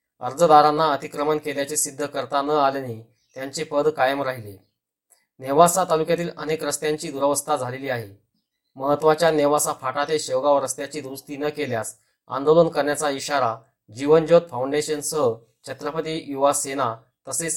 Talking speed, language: 125 wpm, Marathi